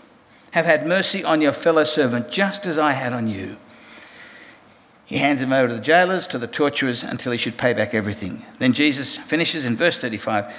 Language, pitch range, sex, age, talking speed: English, 125-165 Hz, male, 60-79, 200 wpm